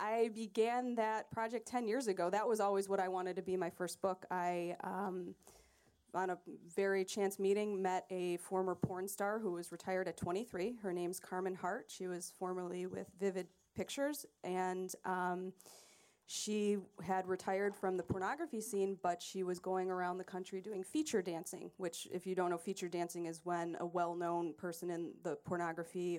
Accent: American